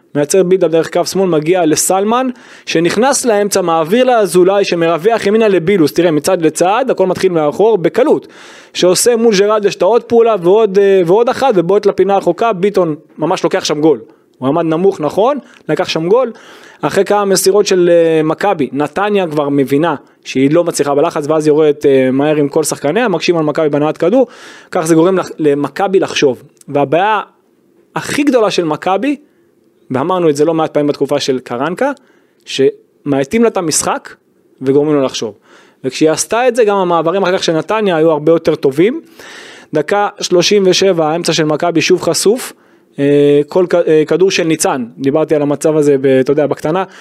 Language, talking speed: Hebrew, 145 wpm